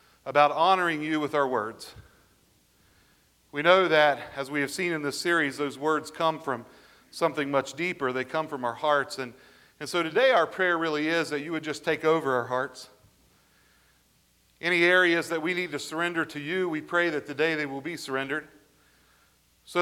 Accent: American